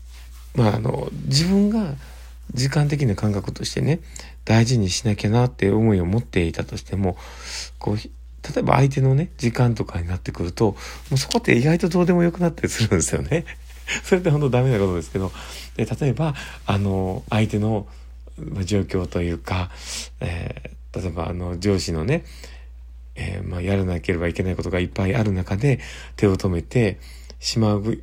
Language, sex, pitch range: Japanese, male, 65-110 Hz